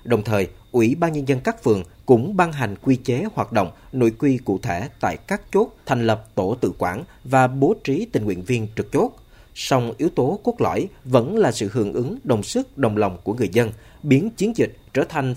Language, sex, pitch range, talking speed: Vietnamese, male, 105-135 Hz, 225 wpm